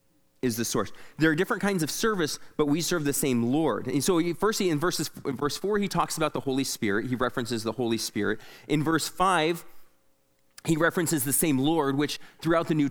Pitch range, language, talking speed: 130-190 Hz, English, 220 wpm